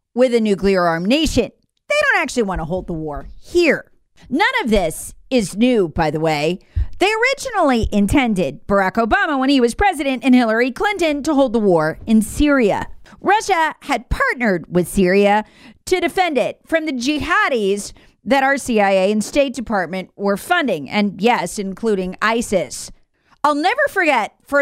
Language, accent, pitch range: English, American, 200-315 Hz